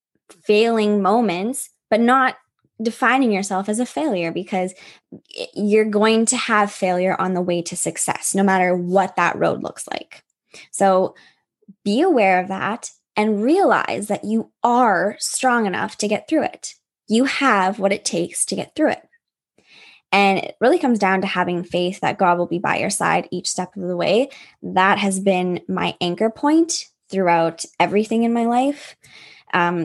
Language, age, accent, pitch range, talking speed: English, 10-29, American, 180-235 Hz, 170 wpm